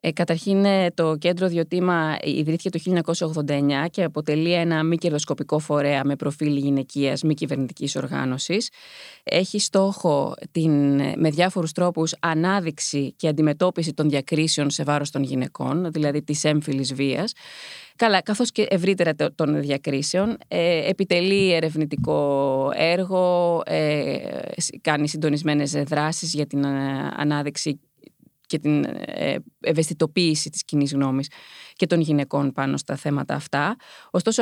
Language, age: Greek, 20-39